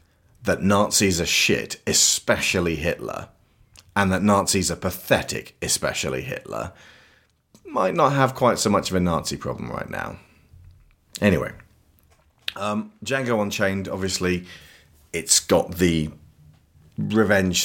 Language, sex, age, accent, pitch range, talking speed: English, male, 30-49, British, 85-110 Hz, 115 wpm